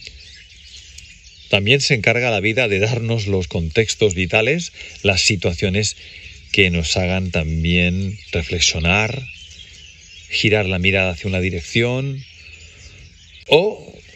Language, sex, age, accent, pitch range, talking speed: Spanish, male, 40-59, Spanish, 85-110 Hz, 100 wpm